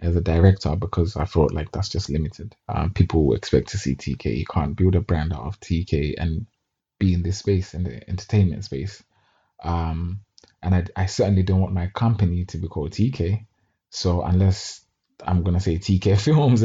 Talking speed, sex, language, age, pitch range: 195 wpm, male, English, 20-39, 90-100 Hz